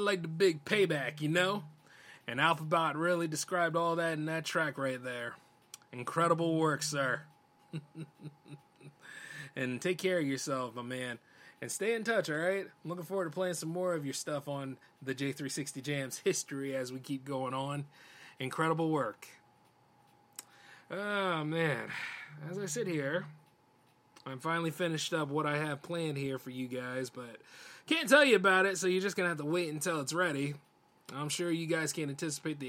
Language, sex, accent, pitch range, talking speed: English, male, American, 130-175 Hz, 175 wpm